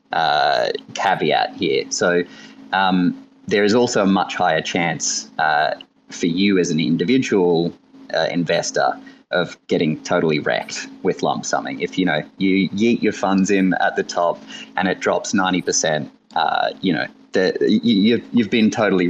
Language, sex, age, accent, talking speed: English, male, 30-49, Australian, 150 wpm